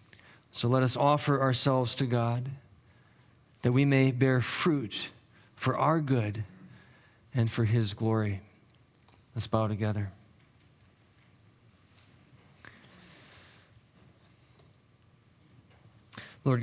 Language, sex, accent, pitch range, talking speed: English, male, American, 115-130 Hz, 85 wpm